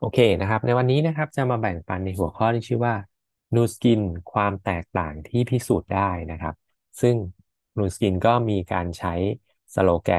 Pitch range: 90-110 Hz